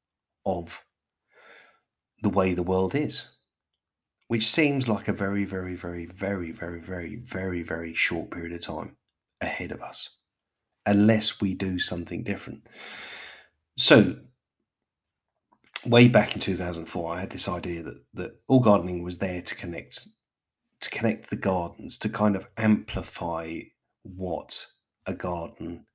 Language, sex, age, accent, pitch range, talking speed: English, male, 40-59, British, 85-105 Hz, 135 wpm